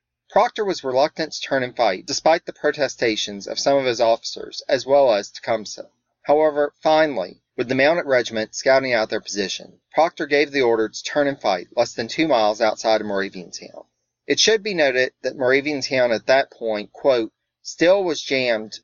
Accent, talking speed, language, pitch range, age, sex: American, 190 wpm, English, 115-145 Hz, 30-49, male